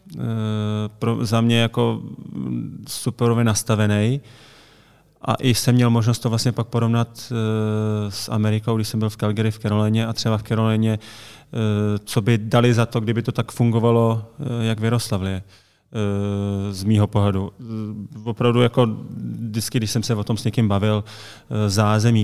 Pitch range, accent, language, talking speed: 105-115 Hz, native, Czech, 145 wpm